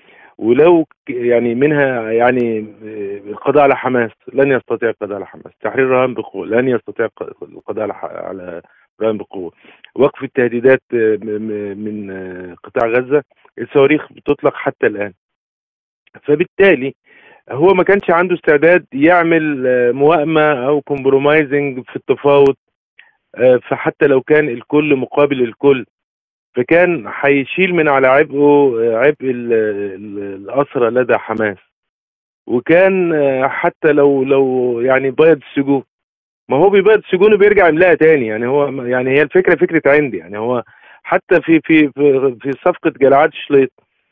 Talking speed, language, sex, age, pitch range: 120 wpm, Arabic, male, 40-59, 115-160 Hz